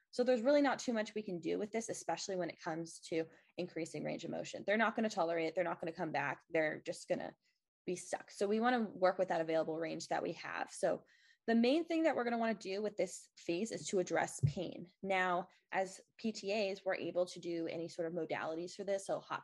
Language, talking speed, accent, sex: English, 255 wpm, American, female